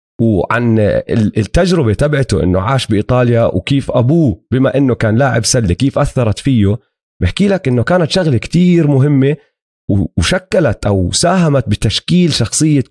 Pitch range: 110-155 Hz